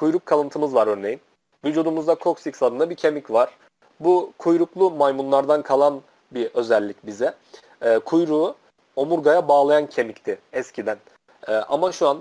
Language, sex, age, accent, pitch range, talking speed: Turkish, male, 40-59, native, 125-160 Hz, 135 wpm